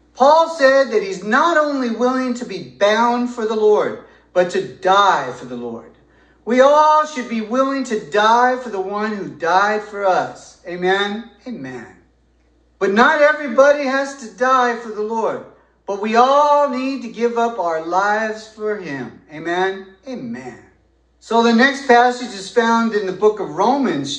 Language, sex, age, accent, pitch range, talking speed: English, male, 40-59, American, 195-255 Hz, 170 wpm